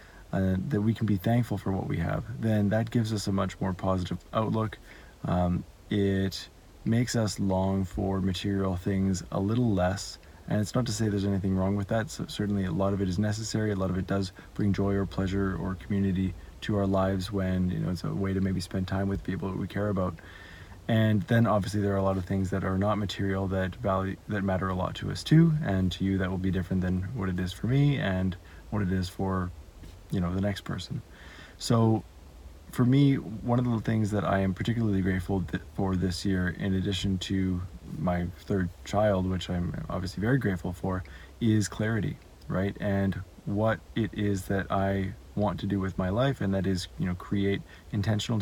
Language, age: English, 20-39